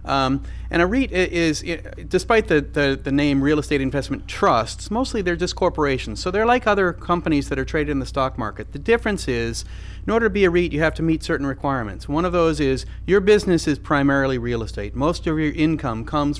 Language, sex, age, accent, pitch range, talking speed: English, male, 40-59, American, 125-170 Hz, 225 wpm